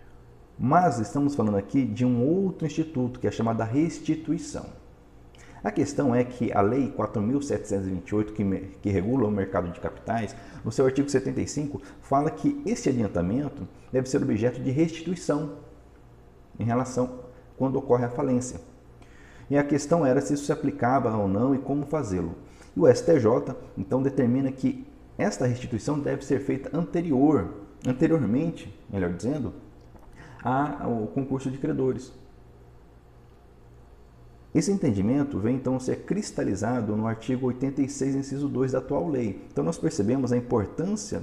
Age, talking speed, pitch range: 50-69, 145 wpm, 100-140 Hz